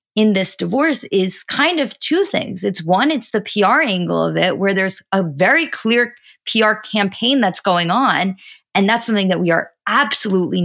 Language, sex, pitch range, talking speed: English, female, 185-250 Hz, 185 wpm